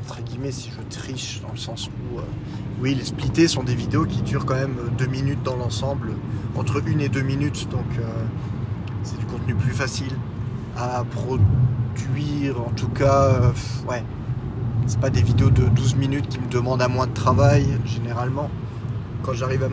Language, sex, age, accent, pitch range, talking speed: French, male, 20-39, French, 115-135 Hz, 185 wpm